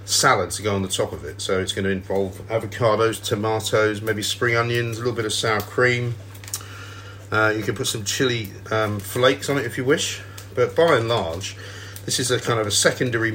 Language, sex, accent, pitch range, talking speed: English, male, British, 100-110 Hz, 210 wpm